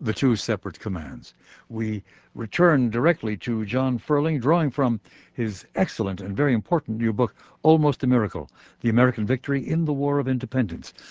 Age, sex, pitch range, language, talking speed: 60-79, male, 105-130 Hz, English, 160 wpm